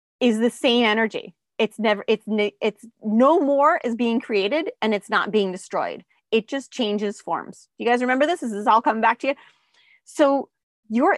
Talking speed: 190 wpm